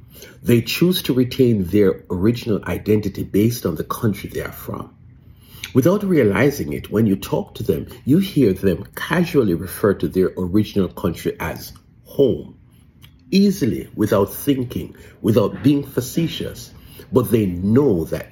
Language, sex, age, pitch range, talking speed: English, male, 50-69, 95-125 Hz, 140 wpm